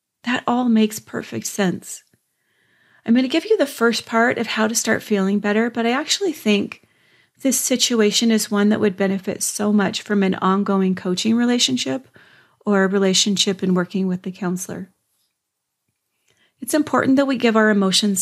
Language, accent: English, American